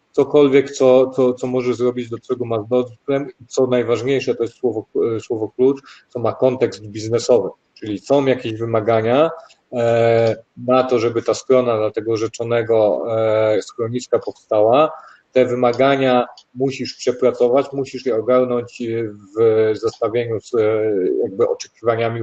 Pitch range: 115-130 Hz